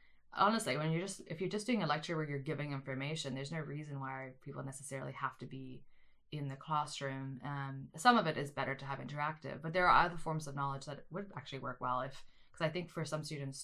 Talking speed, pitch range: 240 wpm, 135-155 Hz